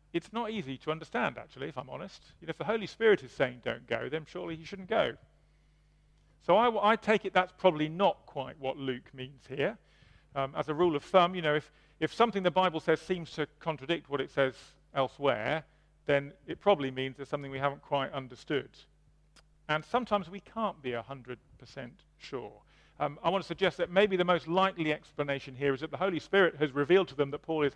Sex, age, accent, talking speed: male, 40-59, British, 210 wpm